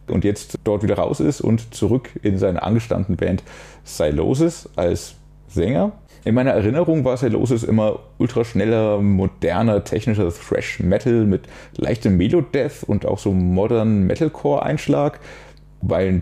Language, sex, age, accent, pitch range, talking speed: German, male, 30-49, German, 95-130 Hz, 130 wpm